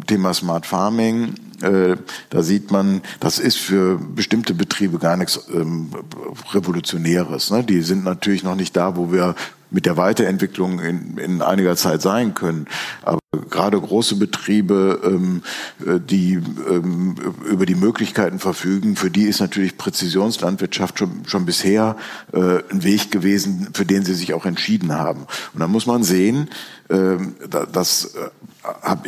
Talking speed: 145 wpm